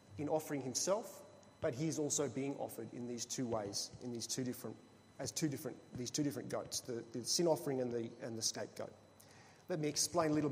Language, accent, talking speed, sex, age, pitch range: English, Australian, 215 wpm, male, 30-49, 135-170 Hz